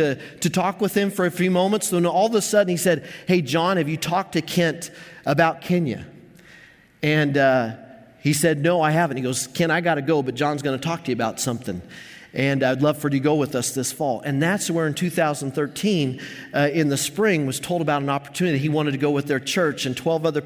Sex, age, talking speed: male, 40-59, 245 wpm